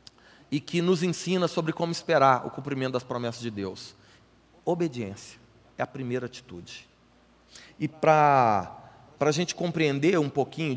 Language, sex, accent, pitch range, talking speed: Portuguese, male, Brazilian, 145-200 Hz, 140 wpm